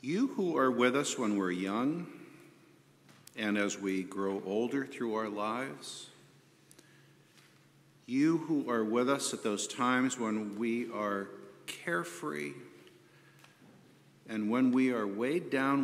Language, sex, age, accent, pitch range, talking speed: English, male, 50-69, American, 110-140 Hz, 130 wpm